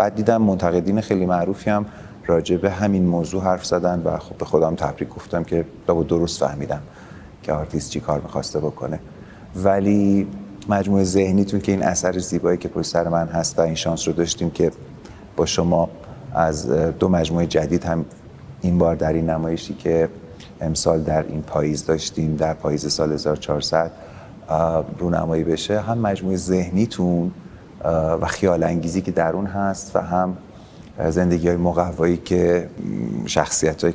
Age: 30-49